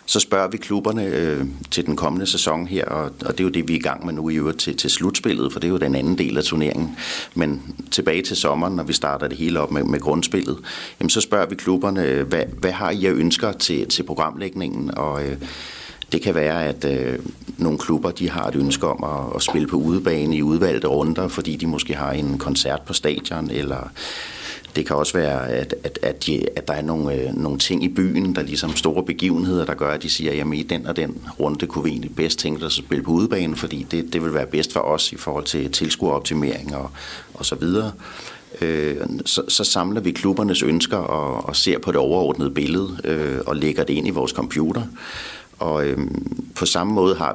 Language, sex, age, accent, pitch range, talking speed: Danish, male, 60-79, native, 70-85 Hz, 225 wpm